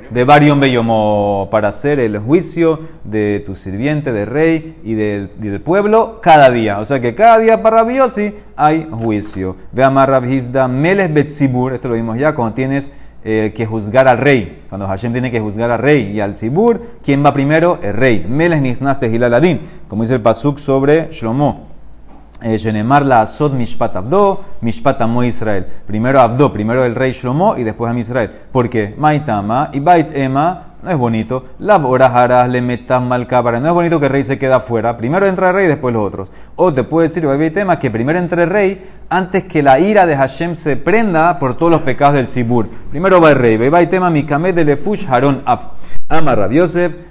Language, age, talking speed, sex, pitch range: Spanish, 30-49, 170 wpm, male, 115-160 Hz